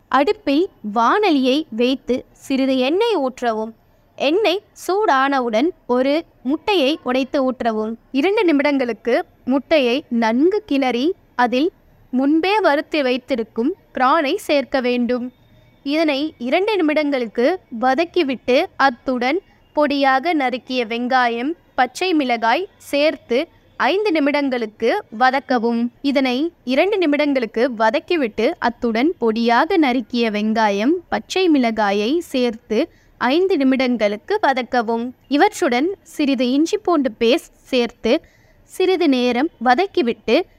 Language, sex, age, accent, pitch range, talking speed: Tamil, female, 20-39, native, 245-320 Hz, 85 wpm